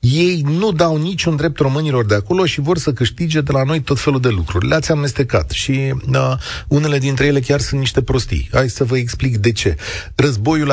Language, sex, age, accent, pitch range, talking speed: Romanian, male, 40-59, native, 105-150 Hz, 200 wpm